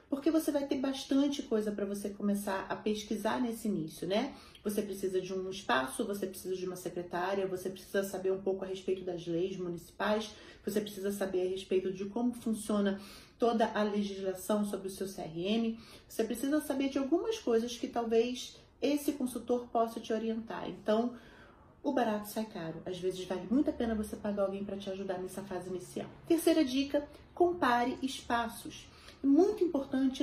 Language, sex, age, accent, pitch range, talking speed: Portuguese, female, 30-49, Brazilian, 190-240 Hz, 175 wpm